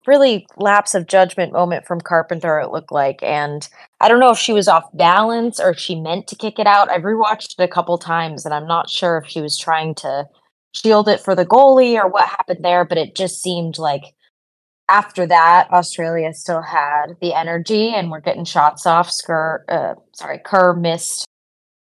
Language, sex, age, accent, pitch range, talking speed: English, female, 20-39, American, 155-205 Hz, 195 wpm